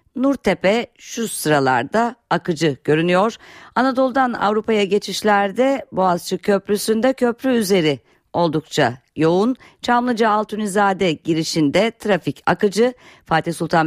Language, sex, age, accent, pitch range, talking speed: Turkish, female, 50-69, native, 150-200 Hz, 85 wpm